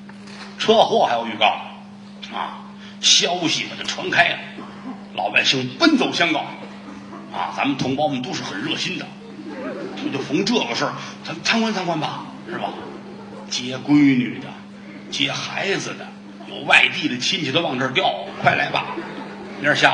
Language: Chinese